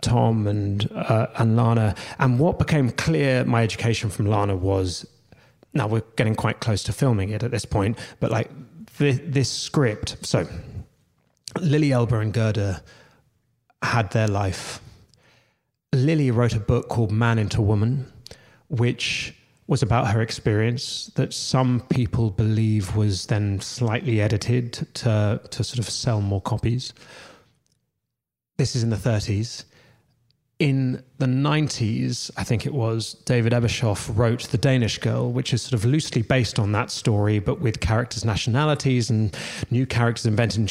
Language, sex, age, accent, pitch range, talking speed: English, male, 30-49, British, 110-135 Hz, 150 wpm